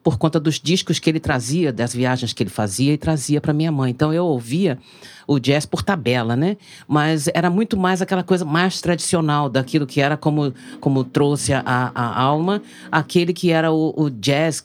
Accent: Brazilian